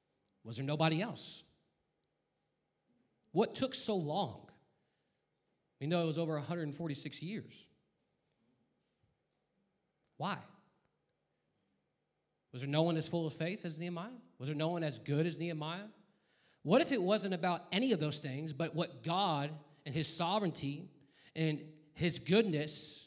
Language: English